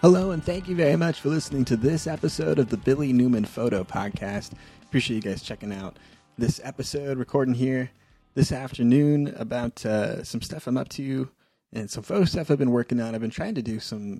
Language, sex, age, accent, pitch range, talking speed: English, male, 20-39, American, 105-130 Hz, 205 wpm